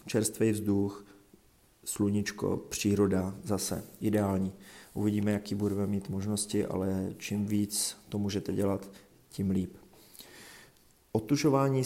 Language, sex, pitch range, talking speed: Czech, male, 100-110 Hz, 100 wpm